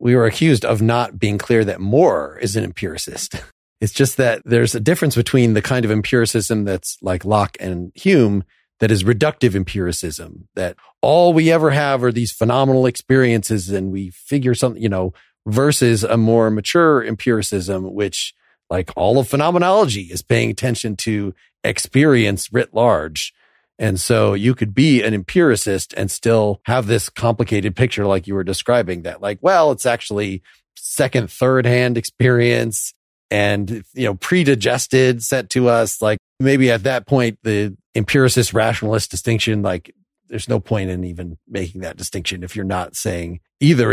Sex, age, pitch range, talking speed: male, 40-59, 100-130 Hz, 165 wpm